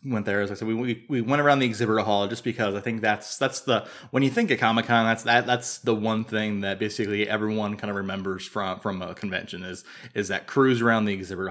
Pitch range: 105-125 Hz